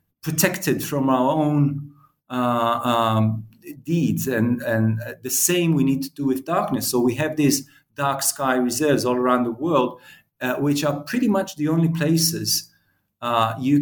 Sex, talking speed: male, 165 wpm